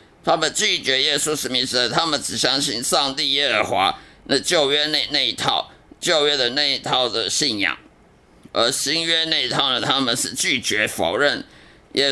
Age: 50-69